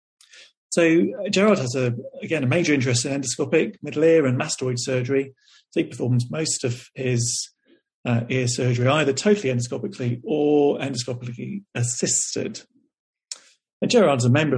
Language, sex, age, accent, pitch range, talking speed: English, male, 40-59, British, 120-155 Hz, 145 wpm